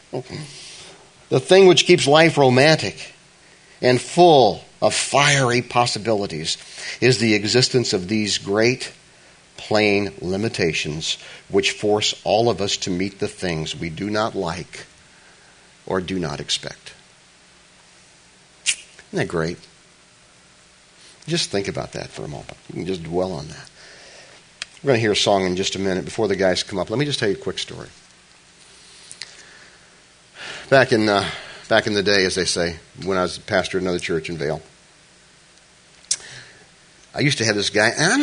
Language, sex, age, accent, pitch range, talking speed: English, male, 50-69, American, 95-140 Hz, 160 wpm